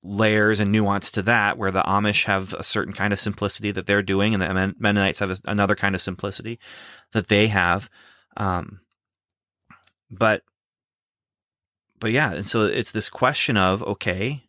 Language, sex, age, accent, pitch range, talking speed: English, male, 30-49, American, 100-120 Hz, 165 wpm